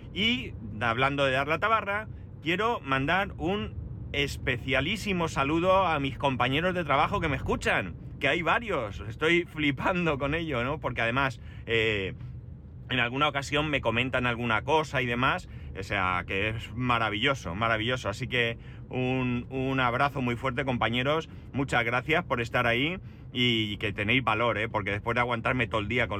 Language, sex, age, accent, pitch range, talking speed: Spanish, male, 30-49, Spanish, 110-135 Hz, 160 wpm